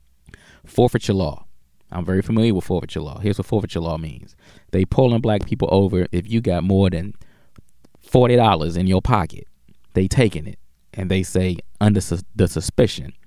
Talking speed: 170 wpm